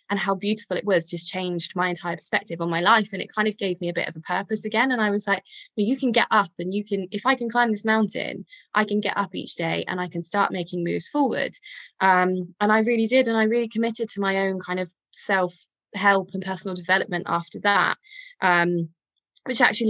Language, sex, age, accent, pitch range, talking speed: English, female, 20-39, British, 180-225 Hz, 240 wpm